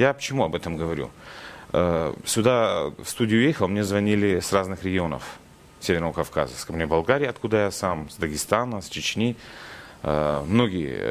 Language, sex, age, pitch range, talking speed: Russian, male, 30-49, 85-115 Hz, 145 wpm